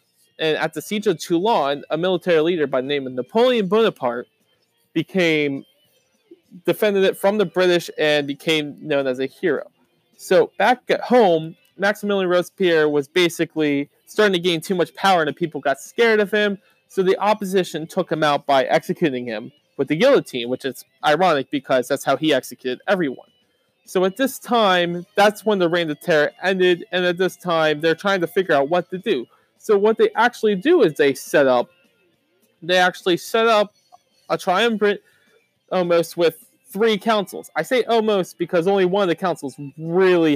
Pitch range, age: 150-205 Hz, 20-39